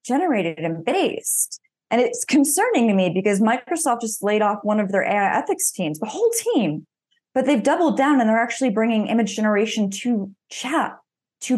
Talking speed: 180 wpm